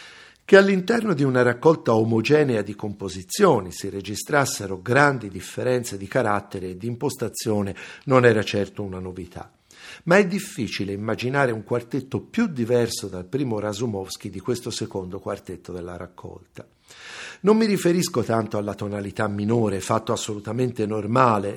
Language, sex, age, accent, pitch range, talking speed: Italian, male, 50-69, native, 100-140 Hz, 135 wpm